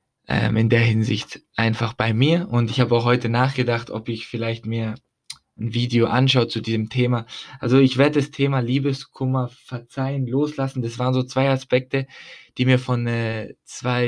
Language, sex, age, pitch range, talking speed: German, male, 20-39, 115-135 Hz, 170 wpm